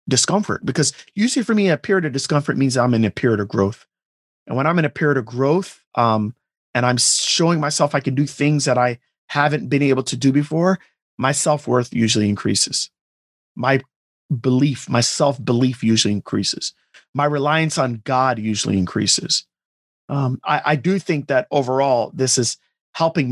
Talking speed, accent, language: 170 wpm, American, English